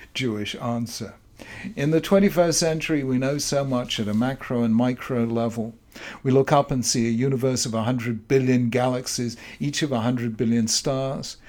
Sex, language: male, English